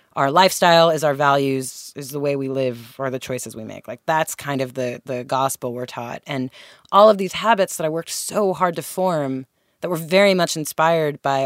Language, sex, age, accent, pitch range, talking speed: English, female, 20-39, American, 140-190 Hz, 220 wpm